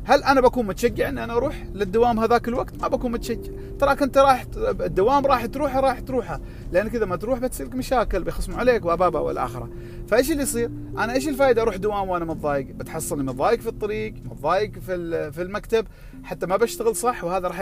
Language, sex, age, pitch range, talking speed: Arabic, male, 40-59, 145-235 Hz, 185 wpm